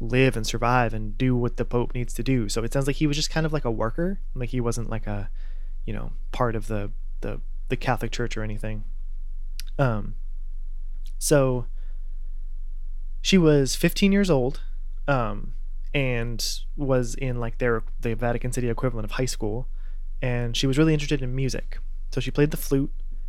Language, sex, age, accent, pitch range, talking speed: English, male, 20-39, American, 110-135 Hz, 185 wpm